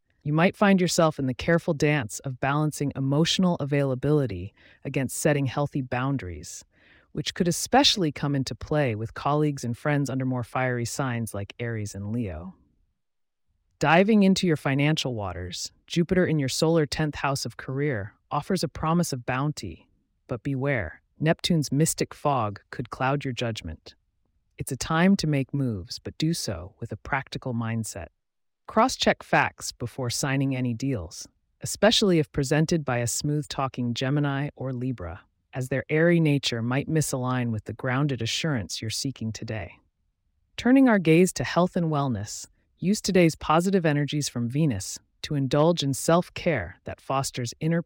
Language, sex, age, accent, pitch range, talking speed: English, female, 30-49, American, 115-155 Hz, 155 wpm